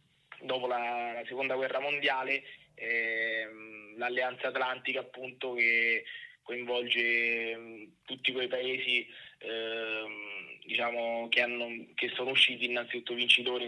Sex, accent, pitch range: male, native, 115-125 Hz